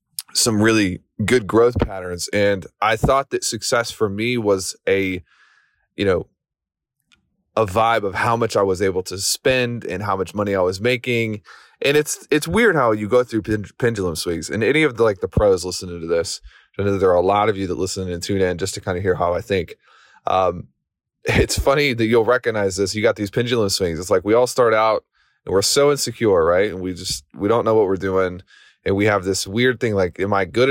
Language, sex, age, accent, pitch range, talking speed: English, male, 20-39, American, 95-130 Hz, 235 wpm